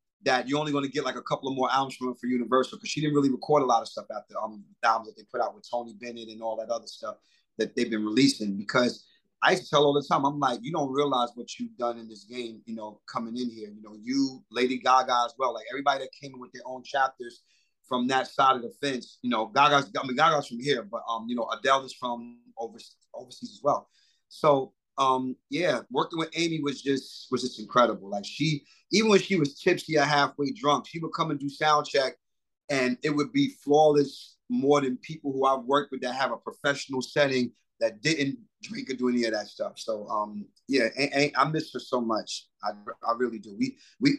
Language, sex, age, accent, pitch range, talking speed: English, male, 30-49, American, 120-145 Hz, 245 wpm